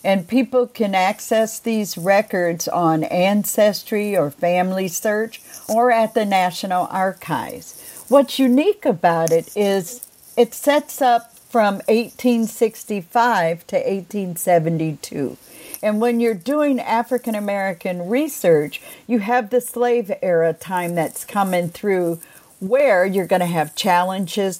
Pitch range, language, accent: 180-240 Hz, English, American